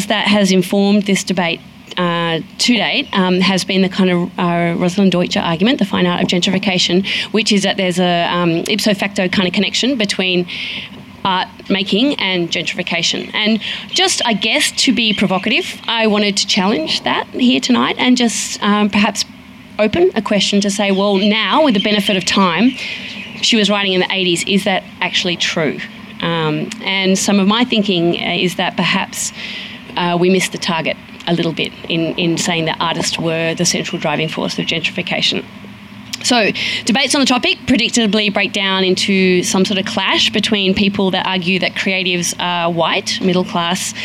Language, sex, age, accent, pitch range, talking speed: English, female, 30-49, Australian, 180-215 Hz, 175 wpm